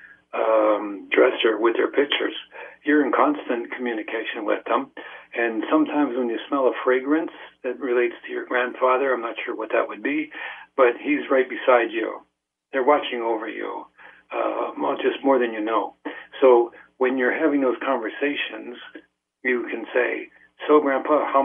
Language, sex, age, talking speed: English, male, 60-79, 160 wpm